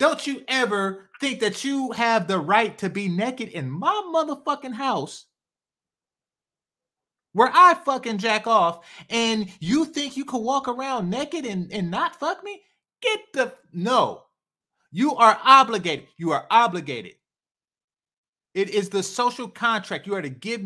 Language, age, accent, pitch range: English, 30-49, American, 195-255 Hz